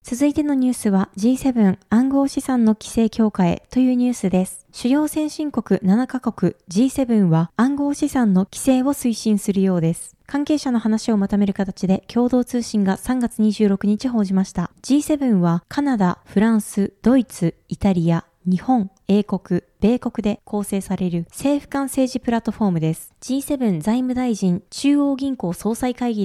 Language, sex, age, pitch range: Japanese, female, 20-39, 195-260 Hz